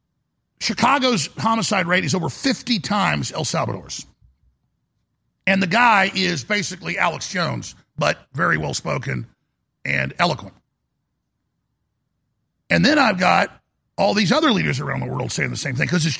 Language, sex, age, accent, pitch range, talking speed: English, male, 50-69, American, 160-205 Hz, 140 wpm